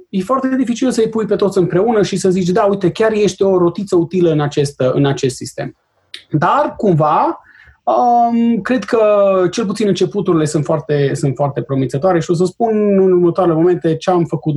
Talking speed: 195 wpm